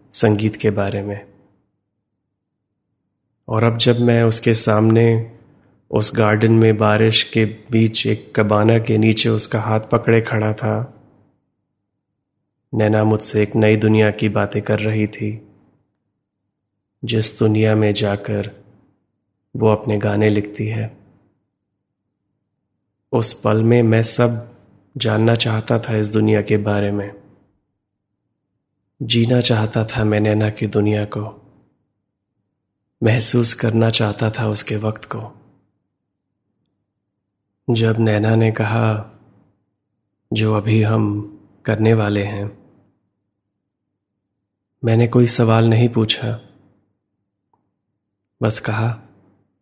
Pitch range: 100-115 Hz